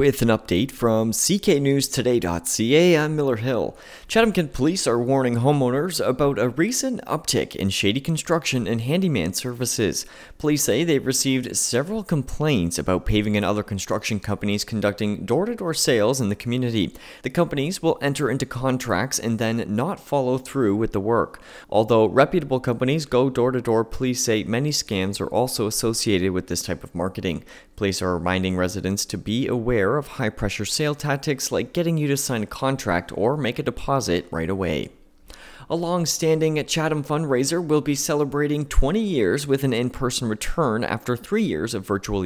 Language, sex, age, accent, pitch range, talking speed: English, male, 30-49, American, 105-145 Hz, 165 wpm